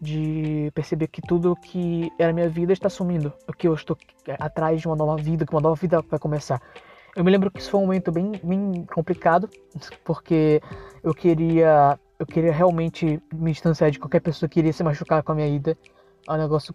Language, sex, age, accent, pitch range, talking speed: Portuguese, female, 20-39, Brazilian, 155-180 Hz, 205 wpm